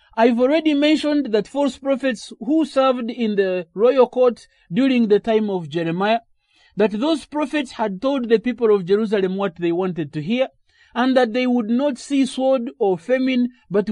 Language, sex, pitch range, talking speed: English, male, 195-260 Hz, 175 wpm